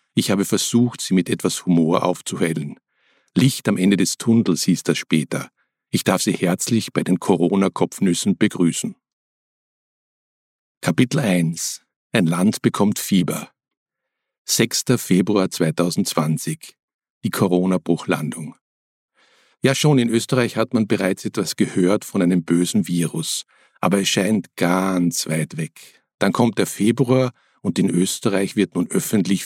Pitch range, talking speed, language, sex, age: 90-115 Hz, 130 wpm, German, male, 50-69